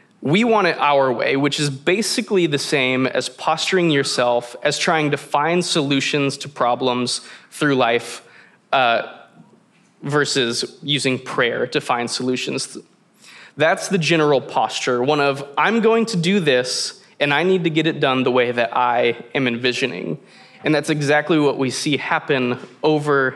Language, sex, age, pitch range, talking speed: English, male, 20-39, 130-160 Hz, 155 wpm